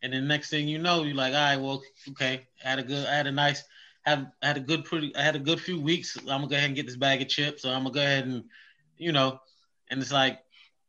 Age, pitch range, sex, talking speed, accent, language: 20-39, 125-145 Hz, male, 305 wpm, American, English